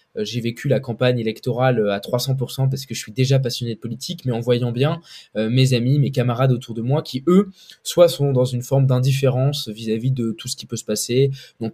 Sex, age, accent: male, 20-39, French